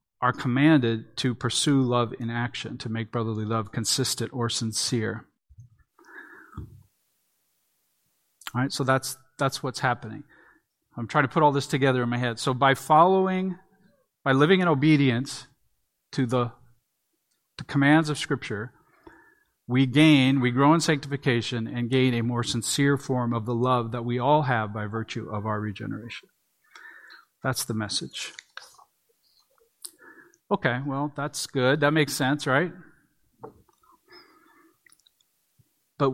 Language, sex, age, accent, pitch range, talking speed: English, male, 40-59, American, 120-150 Hz, 135 wpm